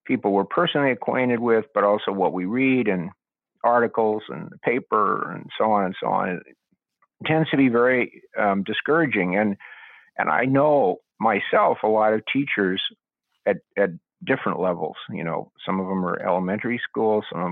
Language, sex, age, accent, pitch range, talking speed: English, male, 50-69, American, 100-130 Hz, 170 wpm